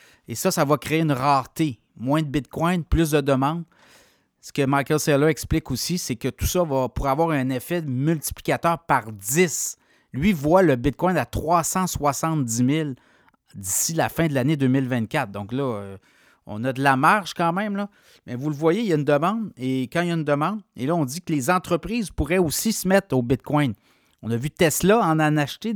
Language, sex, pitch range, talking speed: French, male, 135-170 Hz, 205 wpm